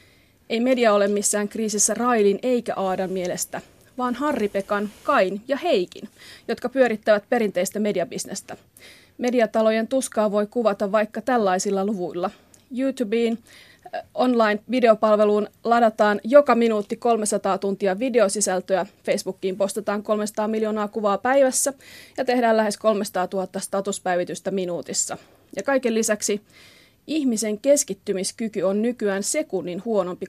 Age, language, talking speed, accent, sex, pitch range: 30-49, Finnish, 110 wpm, native, female, 195-240 Hz